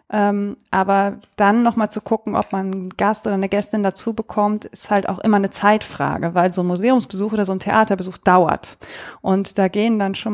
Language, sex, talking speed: German, female, 205 wpm